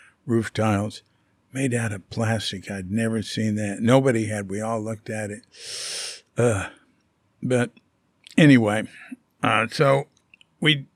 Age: 60-79